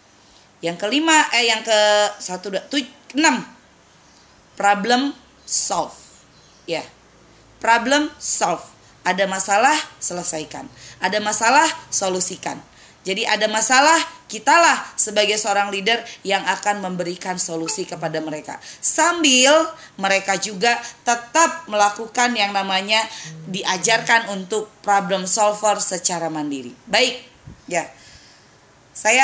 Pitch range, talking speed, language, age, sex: 195-235 Hz, 100 wpm, Indonesian, 20-39, female